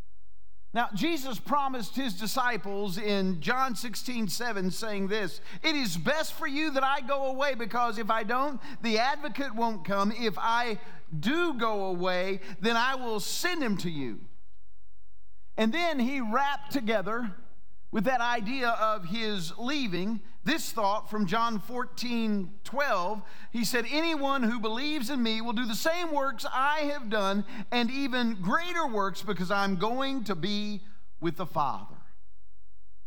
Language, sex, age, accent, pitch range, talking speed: English, male, 50-69, American, 185-250 Hz, 150 wpm